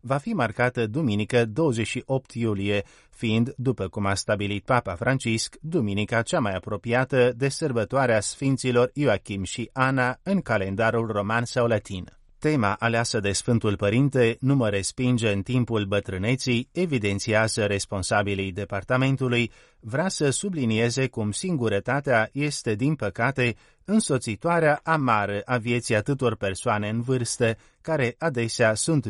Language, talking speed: Romanian, 125 wpm